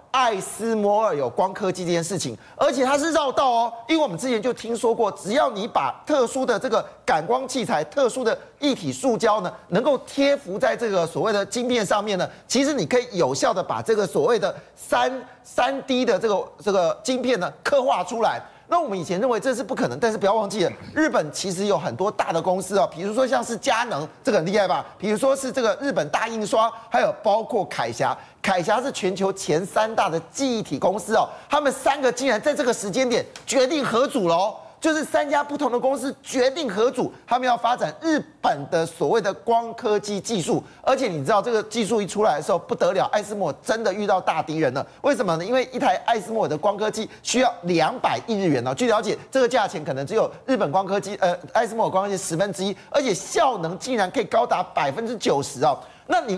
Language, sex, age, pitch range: Chinese, male, 30-49, 195-260 Hz